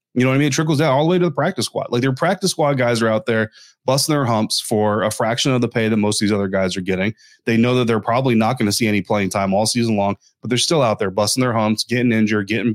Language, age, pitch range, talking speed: English, 20-39, 105-120 Hz, 310 wpm